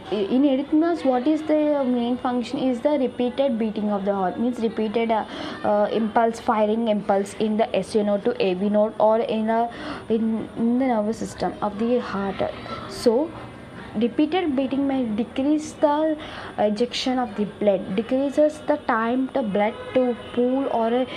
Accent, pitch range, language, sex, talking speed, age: Indian, 215-270 Hz, English, female, 160 wpm, 20-39